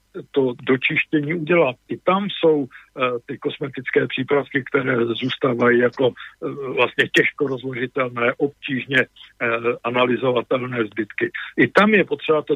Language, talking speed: Czech, 125 wpm